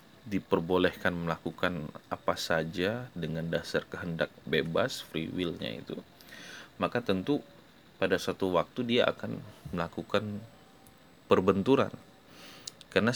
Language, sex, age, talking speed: English, male, 30-49, 95 wpm